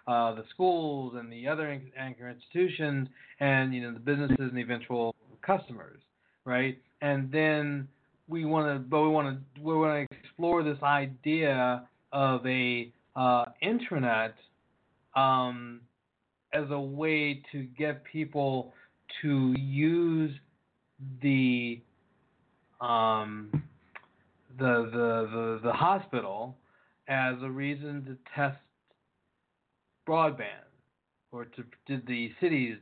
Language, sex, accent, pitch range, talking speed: English, male, American, 125-150 Hz, 115 wpm